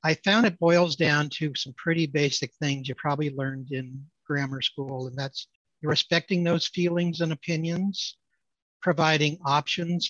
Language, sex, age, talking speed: English, male, 60-79, 150 wpm